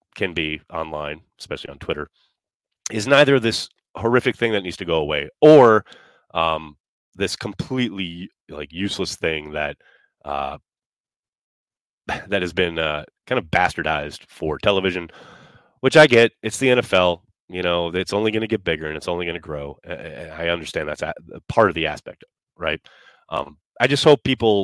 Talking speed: 165 wpm